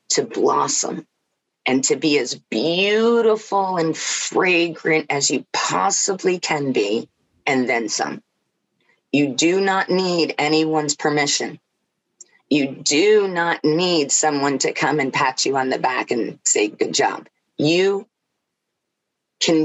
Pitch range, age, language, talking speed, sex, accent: 150-200 Hz, 40-59, English, 130 wpm, female, American